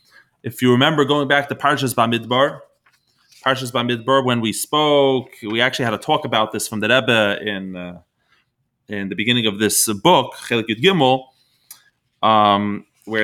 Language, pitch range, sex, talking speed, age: English, 115-145 Hz, male, 150 wpm, 30-49